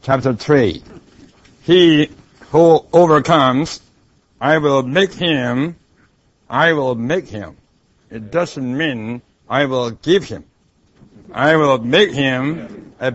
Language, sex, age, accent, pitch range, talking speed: English, male, 60-79, American, 125-155 Hz, 115 wpm